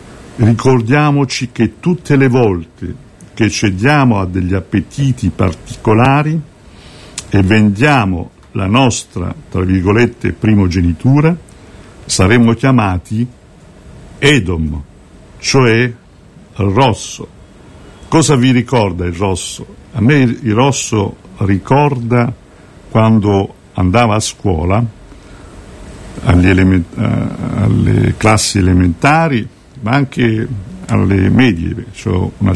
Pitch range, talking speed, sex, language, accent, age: 100-130 Hz, 90 wpm, male, Italian, native, 60-79